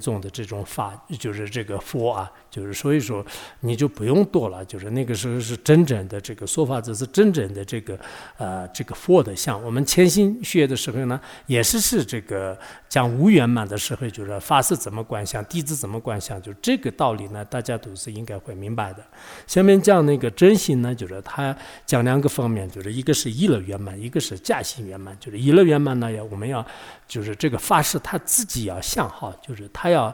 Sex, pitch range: male, 105-145 Hz